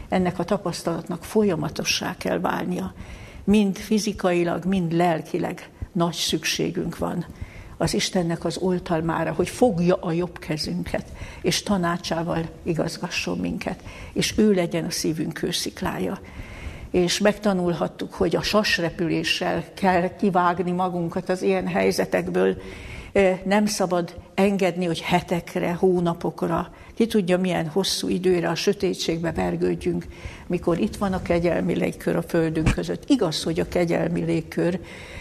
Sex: female